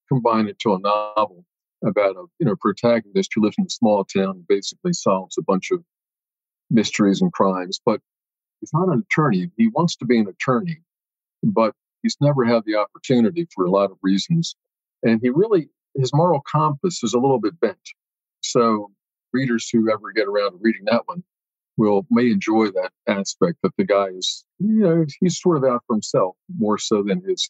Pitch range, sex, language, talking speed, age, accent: 105-165 Hz, male, English, 195 wpm, 50-69, American